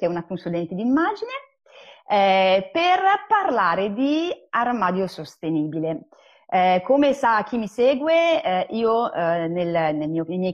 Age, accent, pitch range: 30-49, native, 175-220 Hz